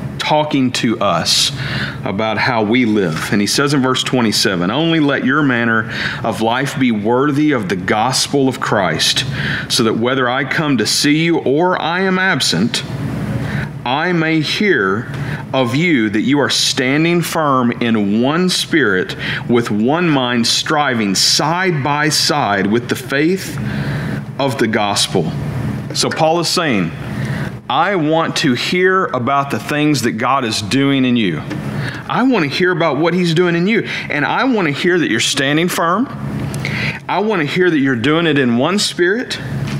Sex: male